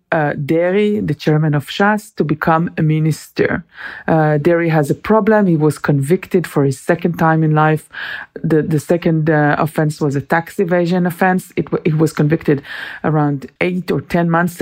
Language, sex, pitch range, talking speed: English, female, 155-190 Hz, 175 wpm